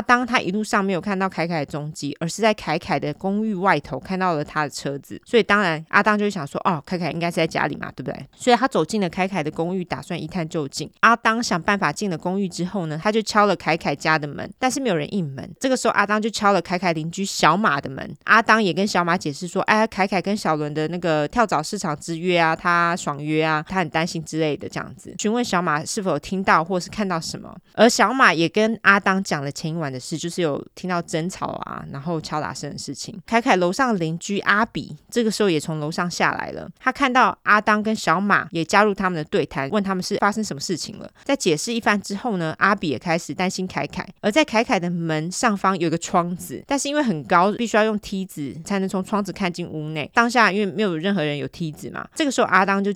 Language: Chinese